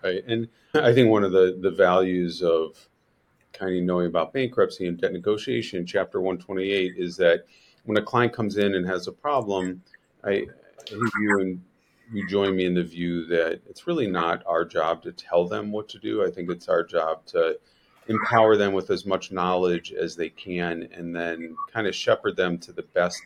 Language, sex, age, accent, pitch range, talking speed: English, male, 40-59, American, 90-120 Hz, 200 wpm